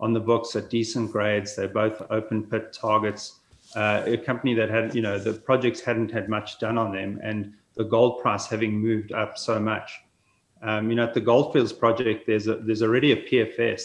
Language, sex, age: English, male, 30-49